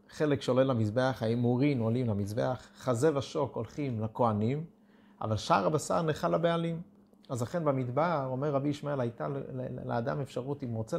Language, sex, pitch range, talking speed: Hebrew, male, 125-185 Hz, 145 wpm